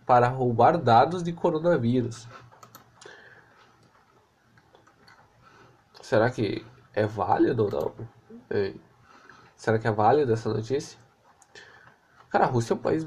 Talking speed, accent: 110 wpm, Brazilian